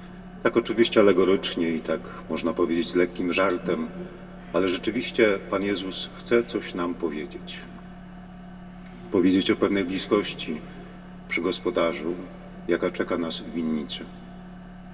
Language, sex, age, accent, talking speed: Polish, male, 40-59, native, 115 wpm